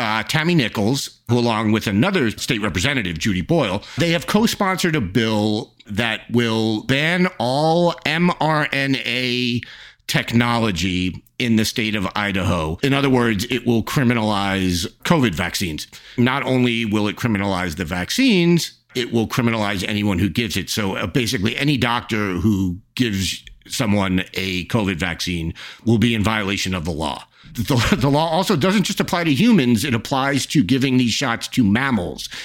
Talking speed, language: 155 wpm, English